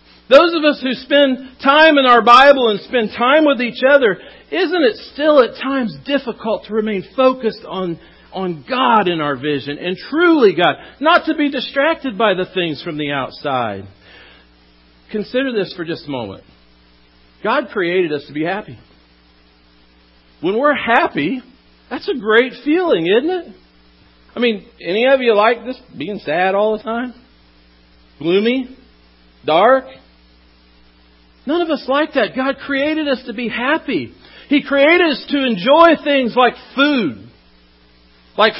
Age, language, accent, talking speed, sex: 50-69, English, American, 155 wpm, male